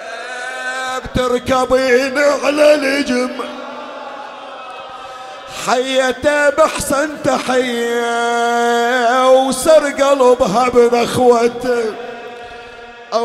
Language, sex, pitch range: Arabic, male, 225-275 Hz